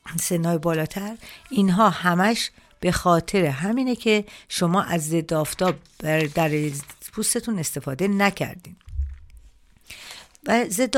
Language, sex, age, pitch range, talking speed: Persian, female, 50-69, 155-195 Hz, 105 wpm